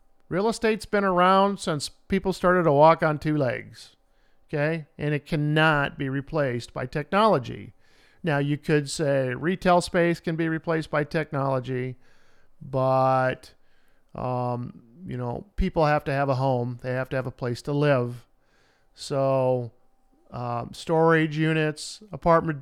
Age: 50-69